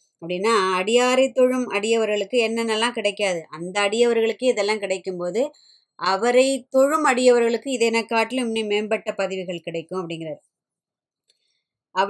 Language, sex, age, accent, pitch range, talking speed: Tamil, male, 20-39, native, 195-235 Hz, 105 wpm